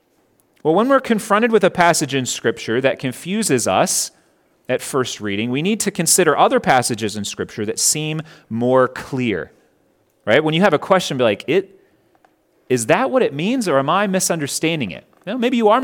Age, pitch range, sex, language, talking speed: 30-49, 130-205 Hz, male, English, 180 wpm